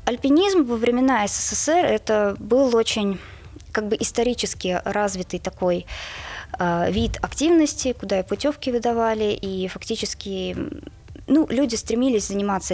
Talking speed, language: 120 wpm, Russian